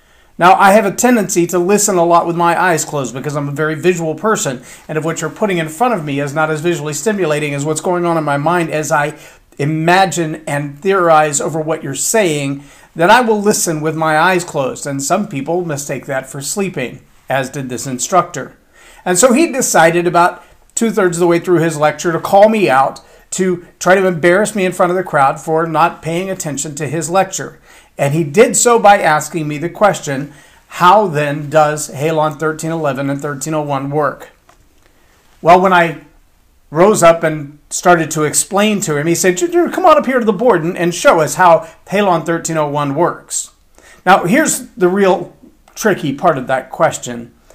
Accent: American